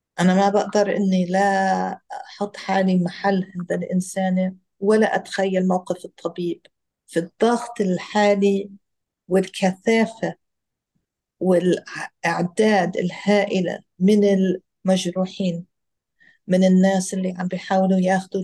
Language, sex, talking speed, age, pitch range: Arabic, female, 90 wpm, 50-69, 185-215 Hz